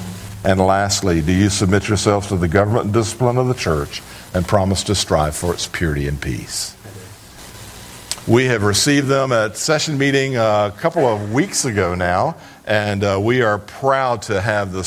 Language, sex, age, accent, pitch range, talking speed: English, male, 60-79, American, 95-125 Hz, 175 wpm